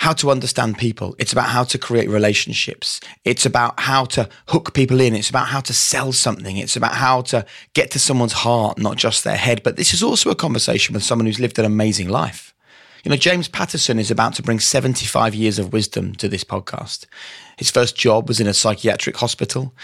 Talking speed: 215 wpm